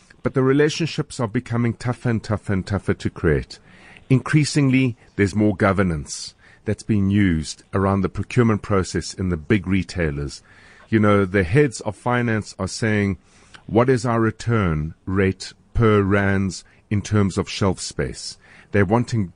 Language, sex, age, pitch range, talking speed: English, male, 50-69, 95-125 Hz, 150 wpm